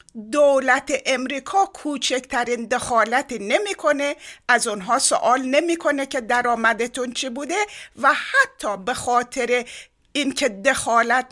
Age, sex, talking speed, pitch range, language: 50-69, female, 100 wpm, 220-295 Hz, Persian